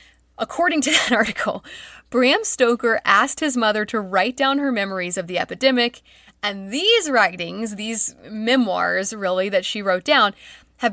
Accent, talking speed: American, 155 wpm